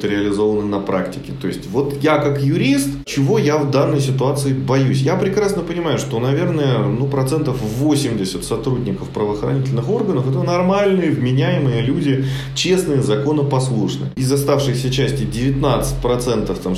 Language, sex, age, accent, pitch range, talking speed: Russian, male, 30-49, native, 110-140 Hz, 130 wpm